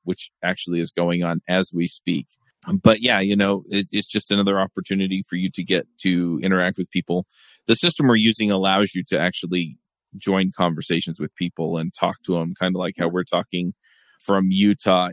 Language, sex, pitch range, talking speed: English, male, 90-105 Hz, 195 wpm